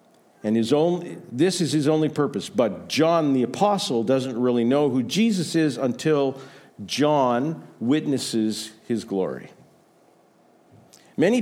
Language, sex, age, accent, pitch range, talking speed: English, male, 50-69, American, 125-175 Hz, 125 wpm